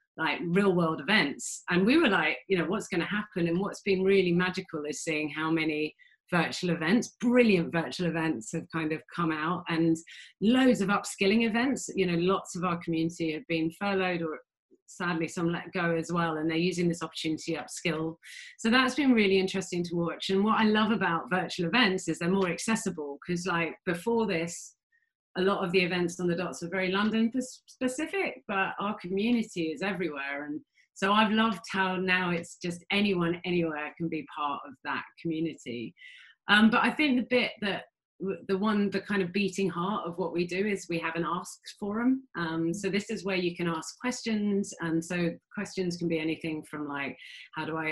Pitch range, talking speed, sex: 165-200 Hz, 200 wpm, female